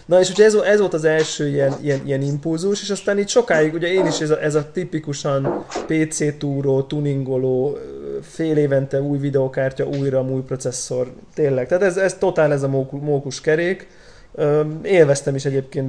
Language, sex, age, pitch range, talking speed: Hungarian, male, 20-39, 135-155 Hz, 170 wpm